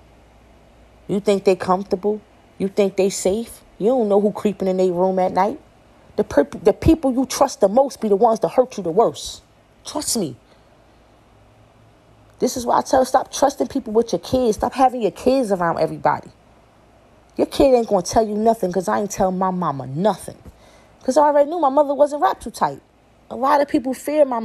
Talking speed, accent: 210 wpm, American